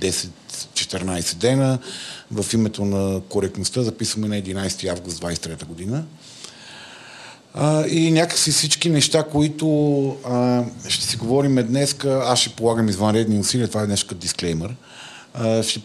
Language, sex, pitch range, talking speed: Bulgarian, male, 105-125 Hz, 120 wpm